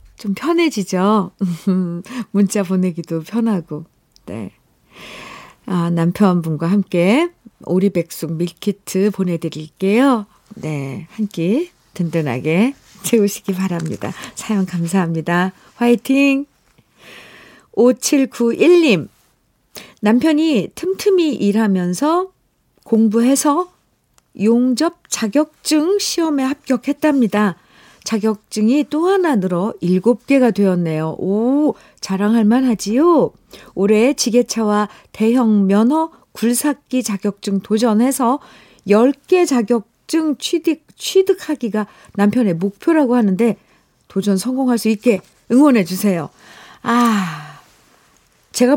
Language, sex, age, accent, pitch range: Korean, female, 50-69, native, 190-265 Hz